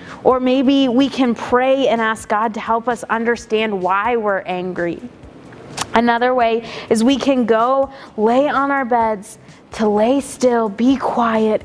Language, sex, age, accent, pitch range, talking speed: English, female, 20-39, American, 195-235 Hz, 155 wpm